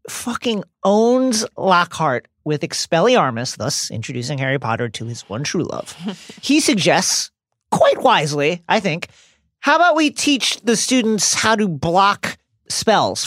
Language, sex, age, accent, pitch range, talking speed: English, male, 40-59, American, 150-220 Hz, 135 wpm